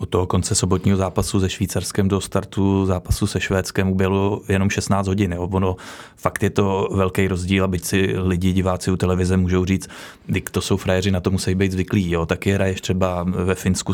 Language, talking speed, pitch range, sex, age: Czech, 200 wpm, 95-110 Hz, male, 20-39